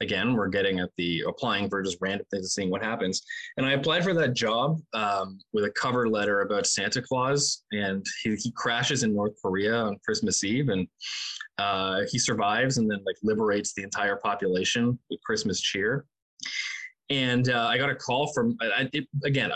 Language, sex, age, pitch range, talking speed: English, male, 20-39, 110-150 Hz, 185 wpm